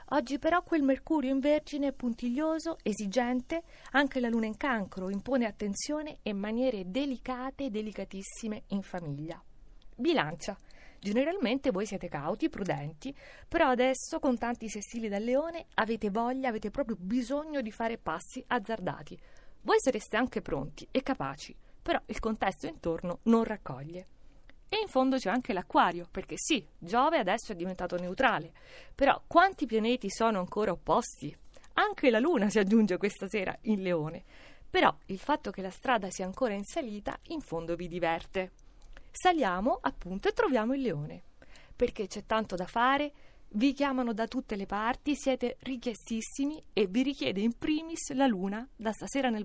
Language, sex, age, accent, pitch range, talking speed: Italian, female, 30-49, native, 200-275 Hz, 155 wpm